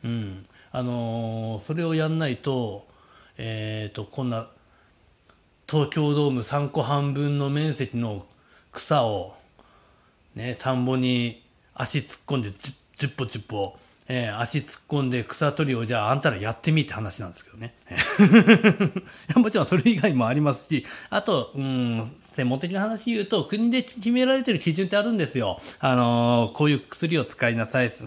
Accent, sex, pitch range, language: native, male, 115-165 Hz, Japanese